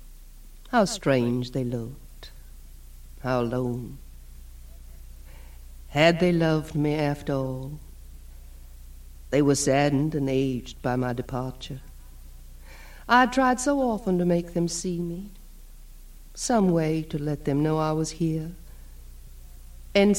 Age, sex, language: 60-79, female, English